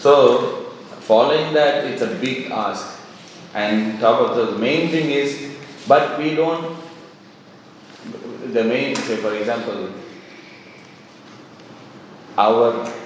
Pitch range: 115-155 Hz